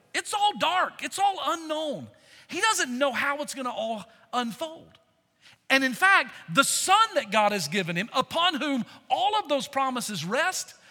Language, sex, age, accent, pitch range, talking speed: English, male, 40-59, American, 200-285 Hz, 175 wpm